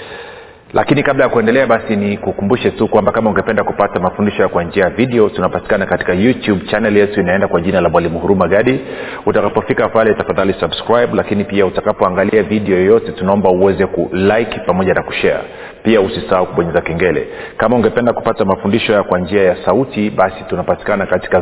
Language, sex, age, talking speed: Swahili, male, 40-59, 170 wpm